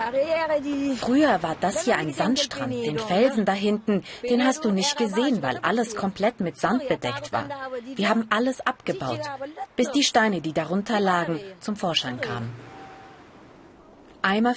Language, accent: German, German